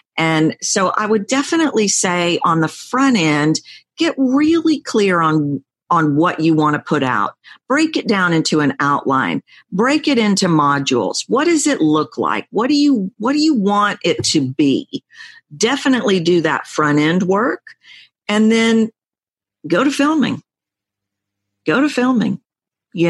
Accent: American